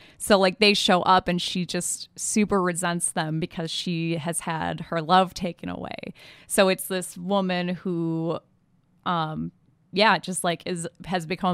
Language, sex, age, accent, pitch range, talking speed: English, female, 20-39, American, 175-200 Hz, 160 wpm